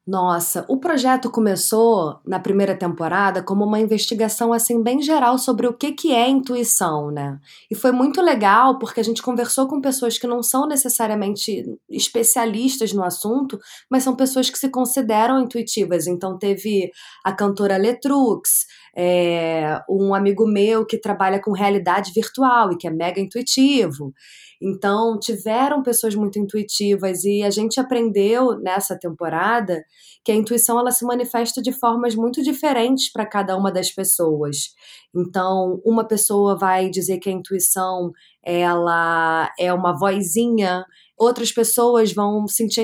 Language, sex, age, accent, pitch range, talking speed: Portuguese, female, 20-39, Brazilian, 185-235 Hz, 145 wpm